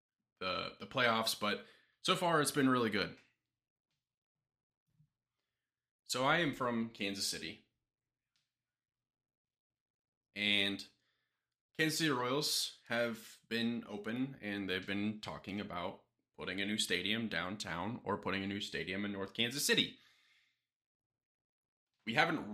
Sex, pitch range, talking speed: male, 105-135 Hz, 115 wpm